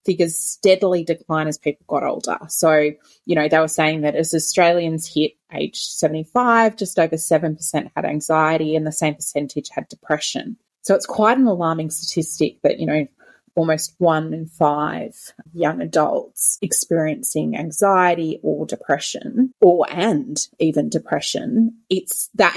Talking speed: 145 wpm